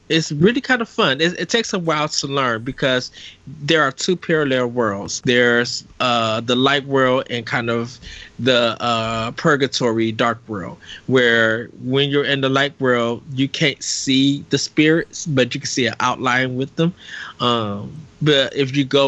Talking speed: 175 wpm